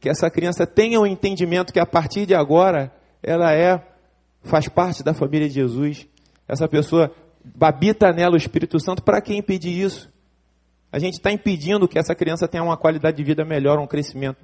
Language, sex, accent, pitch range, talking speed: Portuguese, male, Brazilian, 140-170 Hz, 190 wpm